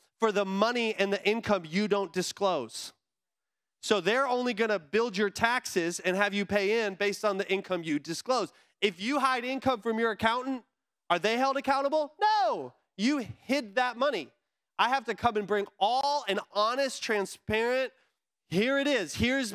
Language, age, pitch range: English, 20-39, 185-225 Hz